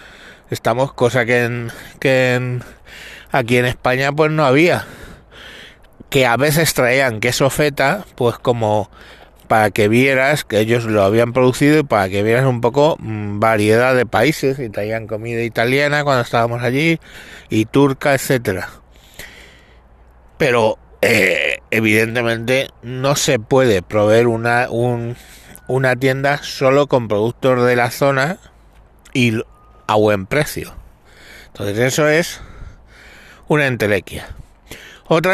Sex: male